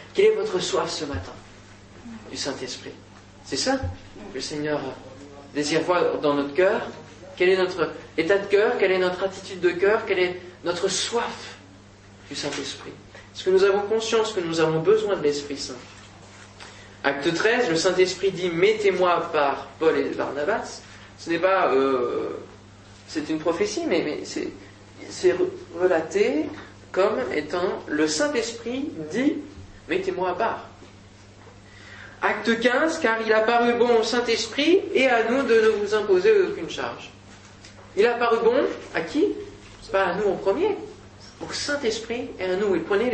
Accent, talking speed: French, 165 wpm